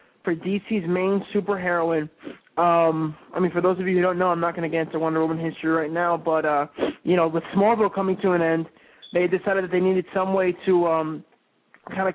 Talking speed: 220 wpm